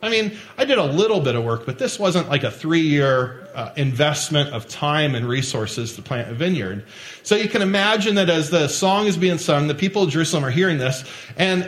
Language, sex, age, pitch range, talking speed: English, male, 40-59, 130-180 Hz, 220 wpm